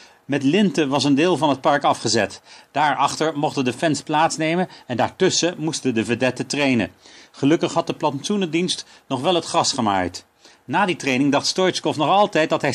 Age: 40-59